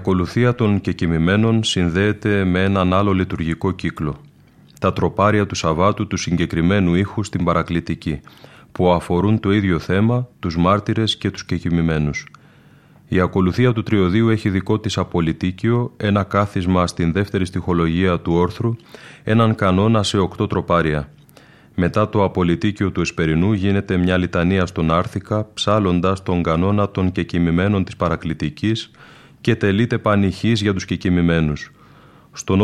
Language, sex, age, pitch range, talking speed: Greek, male, 30-49, 90-105 Hz, 130 wpm